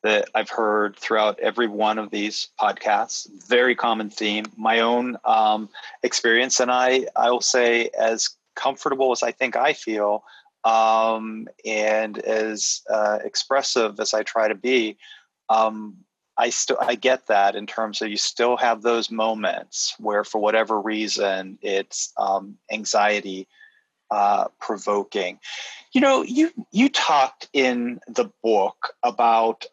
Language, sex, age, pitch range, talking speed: English, male, 30-49, 105-120 Hz, 140 wpm